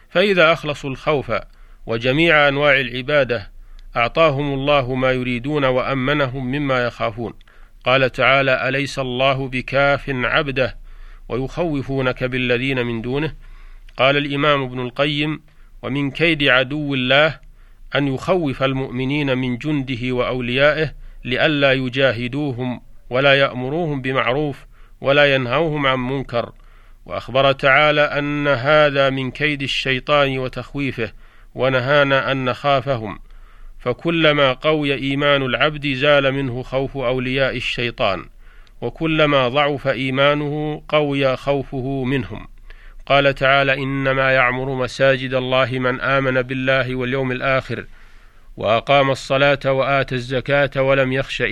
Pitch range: 125-140 Hz